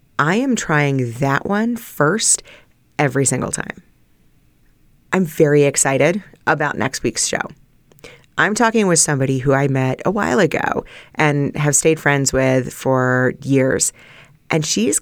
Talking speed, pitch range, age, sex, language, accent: 140 wpm, 140-170 Hz, 30-49, female, English, American